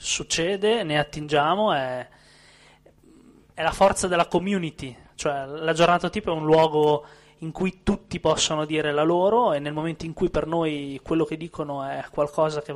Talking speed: 170 wpm